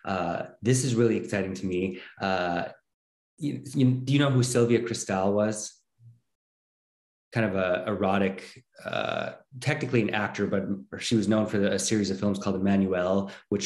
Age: 30-49